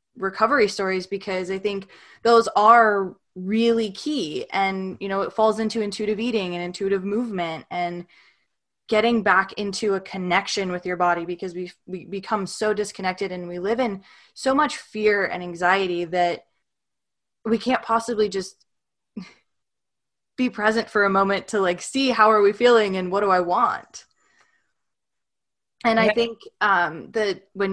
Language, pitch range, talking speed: English, 185-225 Hz, 155 wpm